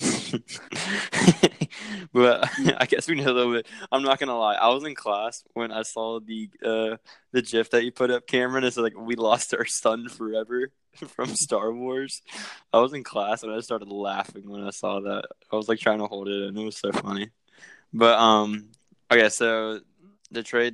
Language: English